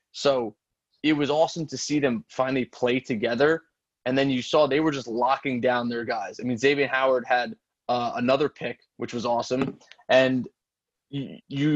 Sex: male